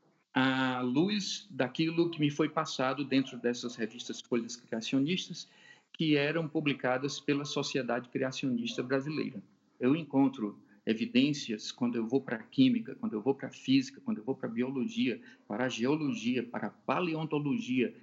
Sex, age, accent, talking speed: male, 50-69, Brazilian, 145 wpm